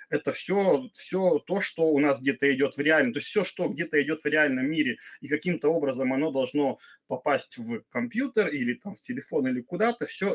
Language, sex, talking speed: Russian, male, 205 wpm